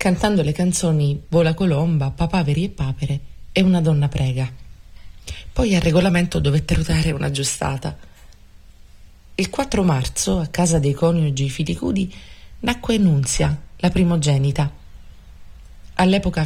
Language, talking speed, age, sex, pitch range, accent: Italian, 115 wpm, 30-49, female, 130-170 Hz, native